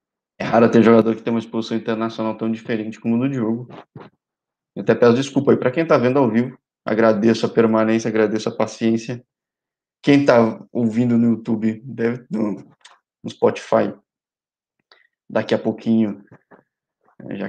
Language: Portuguese